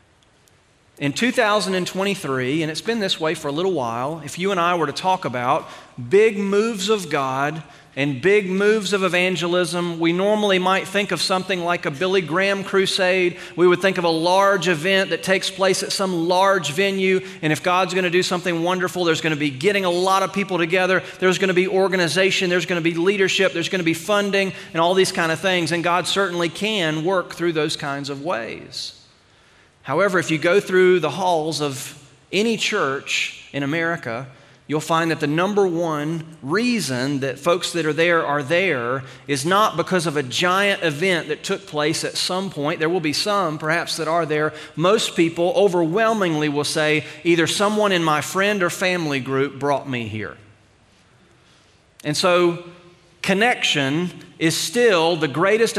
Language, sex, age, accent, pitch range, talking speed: English, male, 40-59, American, 155-190 Hz, 185 wpm